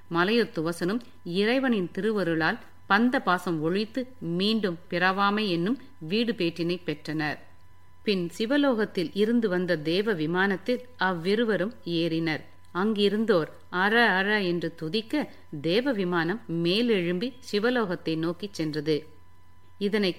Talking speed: 95 wpm